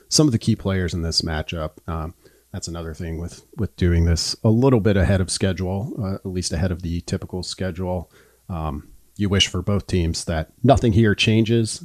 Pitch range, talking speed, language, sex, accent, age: 85-110 Hz, 205 wpm, English, male, American, 40-59